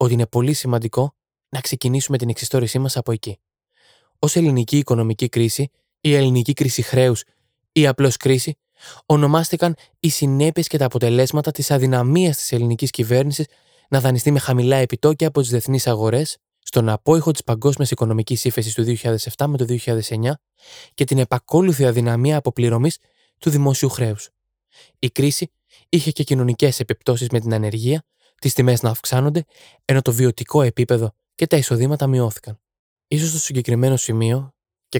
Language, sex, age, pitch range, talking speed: Greek, male, 20-39, 120-145 Hz, 150 wpm